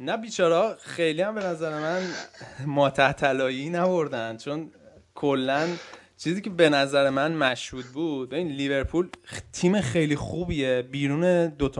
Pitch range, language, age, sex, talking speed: 115-150 Hz, Persian, 20-39, male, 130 wpm